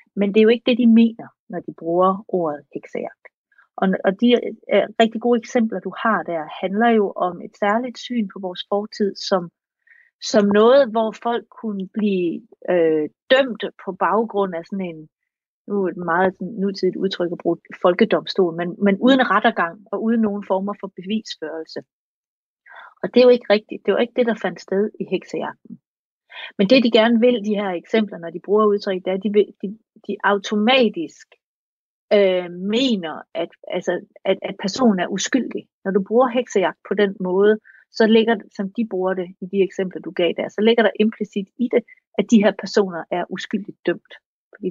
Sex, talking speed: female, 185 wpm